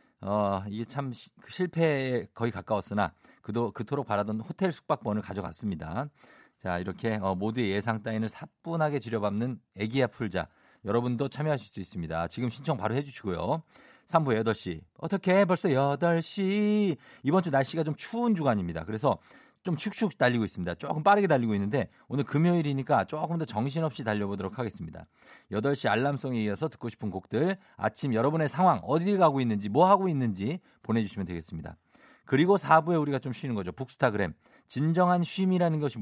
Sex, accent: male, native